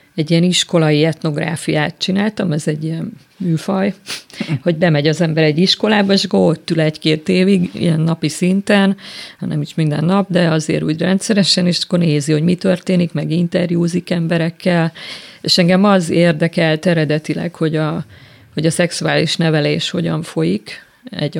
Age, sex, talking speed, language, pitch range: 30-49, female, 150 wpm, Hungarian, 160-190 Hz